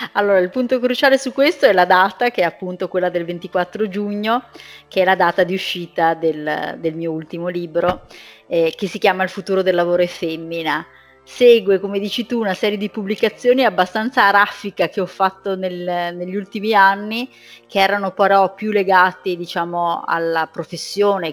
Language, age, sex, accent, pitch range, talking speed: Italian, 30-49, female, native, 165-195 Hz, 175 wpm